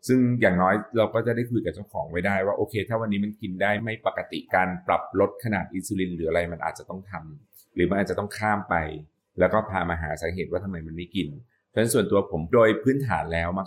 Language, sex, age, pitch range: Thai, male, 30-49, 90-115 Hz